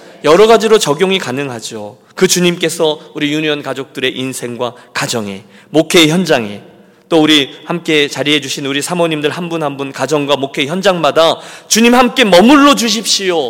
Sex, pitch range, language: male, 145-225 Hz, Korean